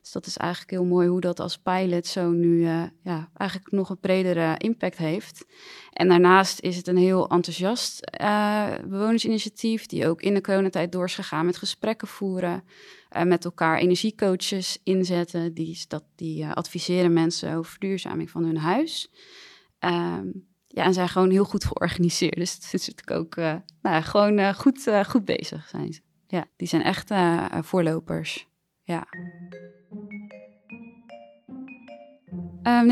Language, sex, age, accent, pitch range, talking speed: Dutch, female, 20-39, Dutch, 170-200 Hz, 160 wpm